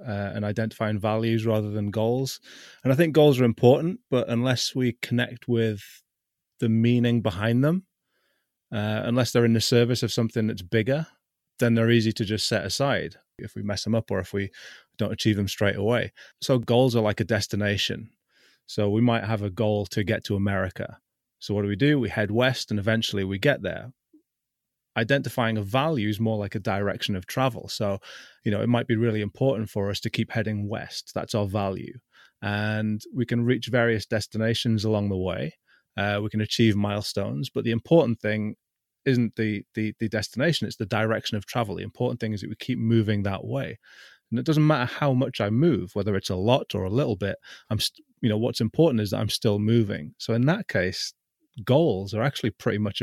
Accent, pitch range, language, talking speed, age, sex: British, 105-120 Hz, English, 205 wpm, 30-49, male